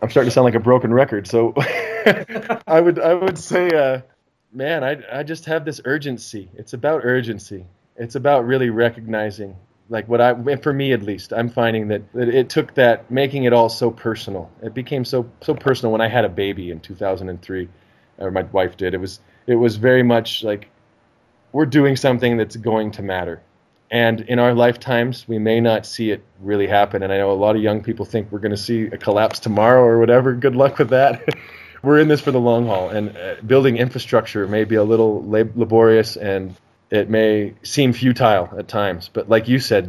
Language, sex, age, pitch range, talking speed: English, male, 20-39, 105-125 Hz, 205 wpm